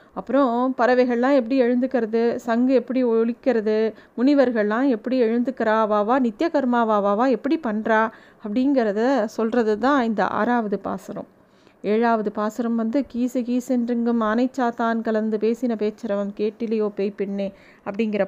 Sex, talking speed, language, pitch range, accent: female, 100 wpm, Tamil, 220-265 Hz, native